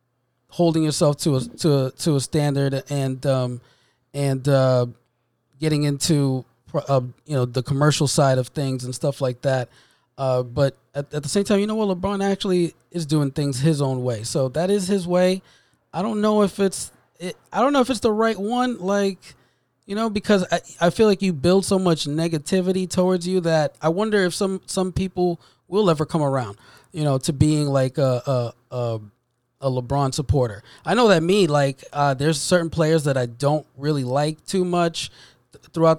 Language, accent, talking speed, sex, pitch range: English, American, 200 wpm, male, 135-170 Hz